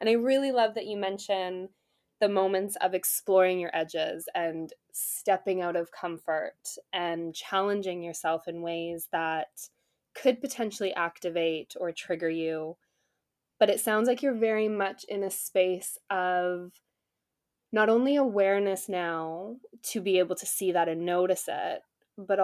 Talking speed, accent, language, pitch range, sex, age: 145 wpm, American, English, 175-210 Hz, female, 20-39